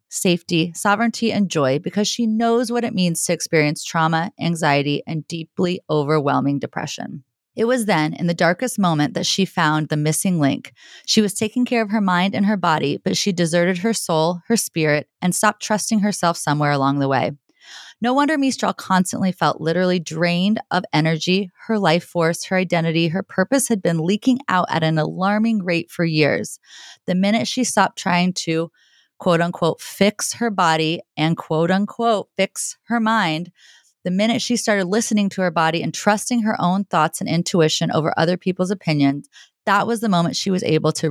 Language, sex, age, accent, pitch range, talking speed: English, female, 30-49, American, 160-205 Hz, 185 wpm